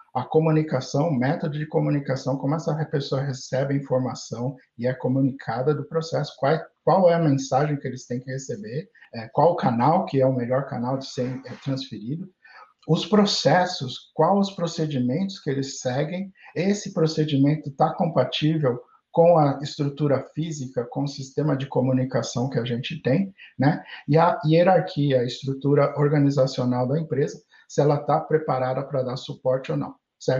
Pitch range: 130-155 Hz